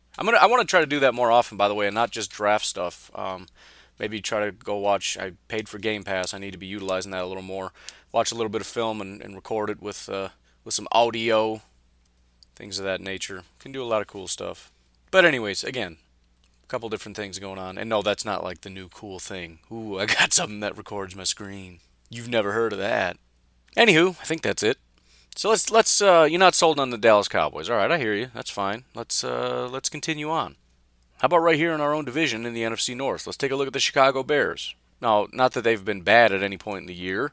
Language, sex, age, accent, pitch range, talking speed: English, male, 30-49, American, 95-120 Hz, 250 wpm